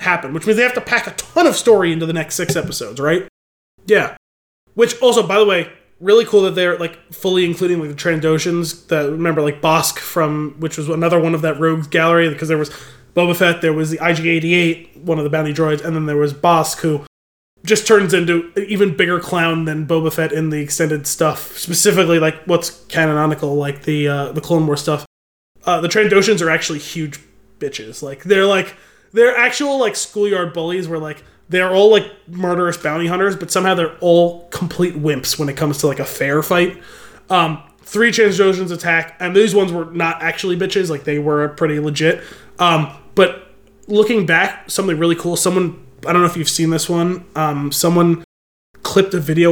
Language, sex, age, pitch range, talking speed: English, male, 20-39, 155-185 Hz, 200 wpm